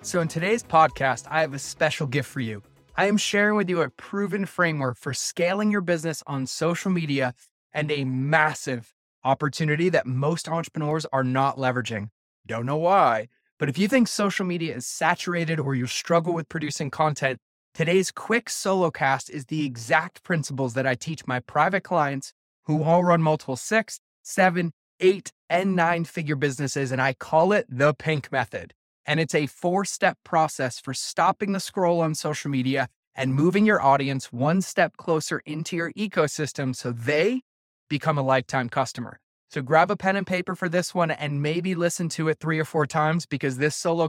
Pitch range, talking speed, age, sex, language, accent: 135-175 Hz, 180 wpm, 20-39, male, English, American